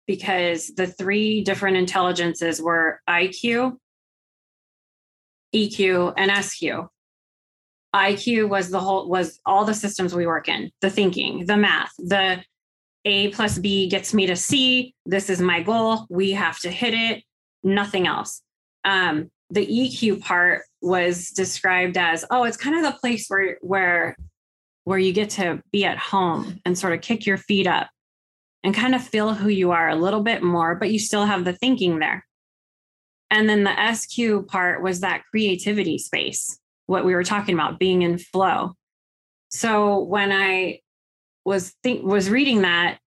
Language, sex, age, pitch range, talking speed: English, female, 20-39, 175-205 Hz, 160 wpm